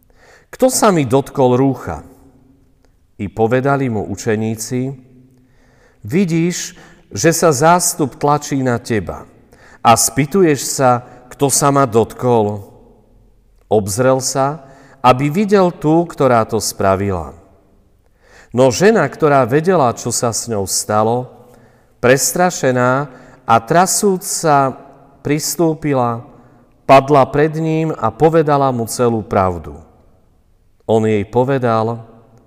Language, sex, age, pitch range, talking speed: Slovak, male, 50-69, 105-145 Hz, 105 wpm